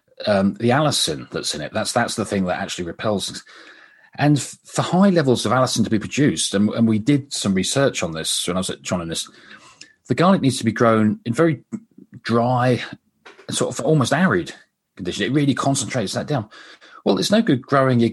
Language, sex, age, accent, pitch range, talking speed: English, male, 40-59, British, 105-145 Hz, 205 wpm